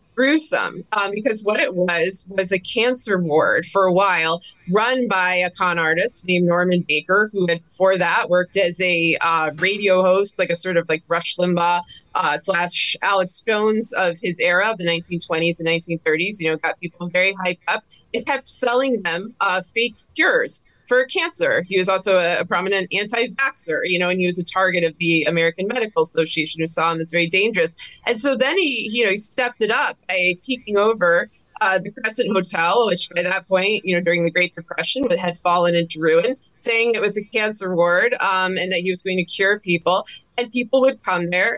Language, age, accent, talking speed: English, 20-39, American, 210 wpm